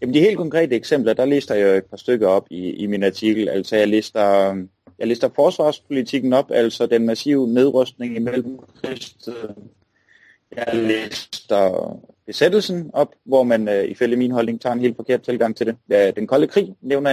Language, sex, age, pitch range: Danish, male, 30-49, 110-135 Hz